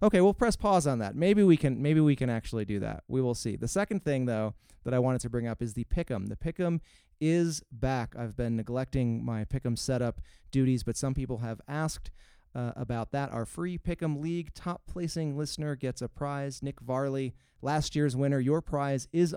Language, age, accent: English, 30-49, American